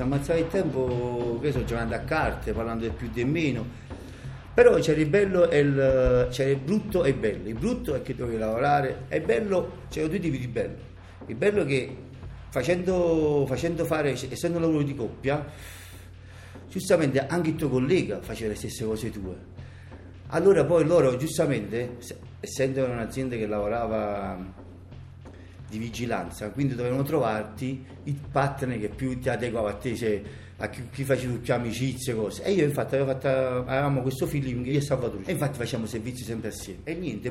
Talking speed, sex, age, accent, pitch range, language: 175 wpm, male, 50-69, native, 105-135 Hz, Italian